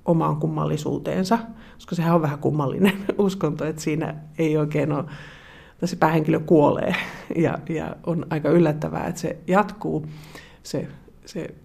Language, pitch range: Finnish, 150-170 Hz